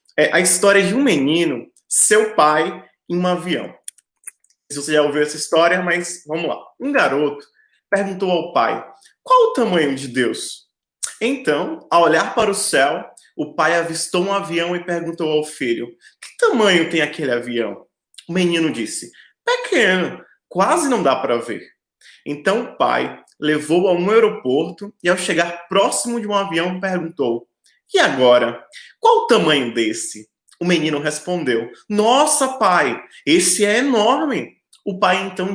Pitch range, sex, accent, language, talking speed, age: 150-200 Hz, male, Brazilian, Portuguese, 155 wpm, 20-39